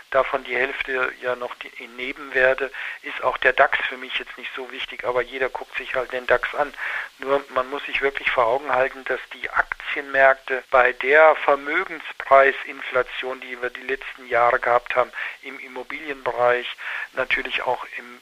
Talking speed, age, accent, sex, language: 170 wpm, 50-69, German, male, German